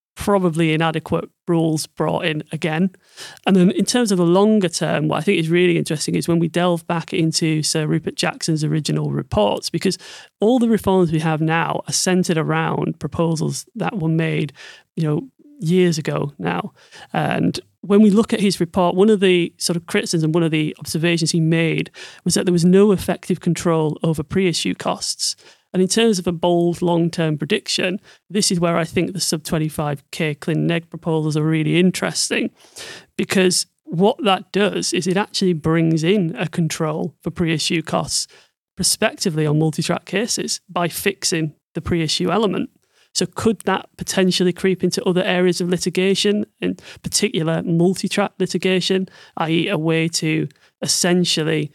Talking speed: 170 wpm